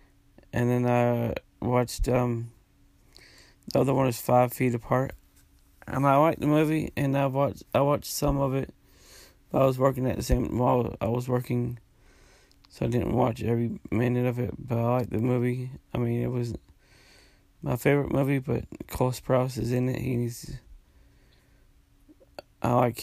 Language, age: English, 20-39